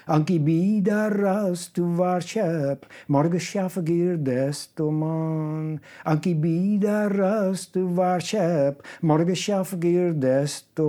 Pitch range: 155-190 Hz